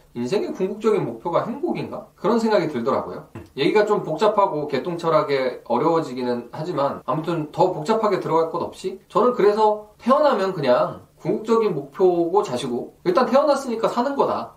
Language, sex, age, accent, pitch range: Korean, male, 20-39, native, 150-210 Hz